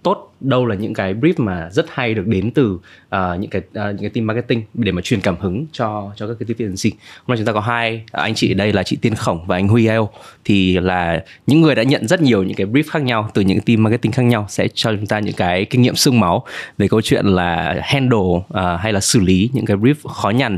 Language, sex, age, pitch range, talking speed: Vietnamese, male, 20-39, 100-130 Hz, 270 wpm